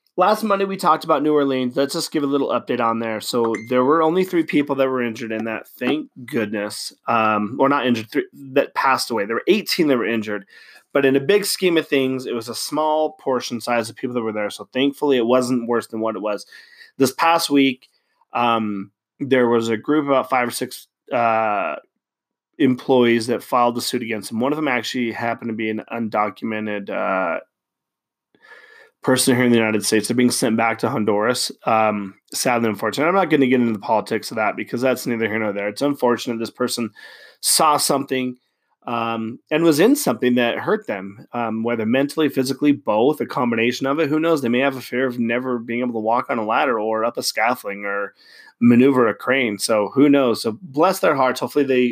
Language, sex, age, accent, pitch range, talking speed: English, male, 30-49, American, 115-140 Hz, 215 wpm